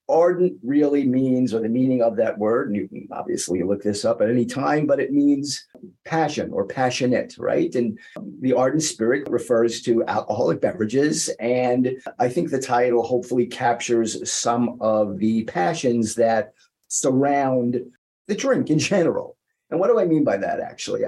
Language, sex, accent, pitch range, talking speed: English, male, American, 115-145 Hz, 170 wpm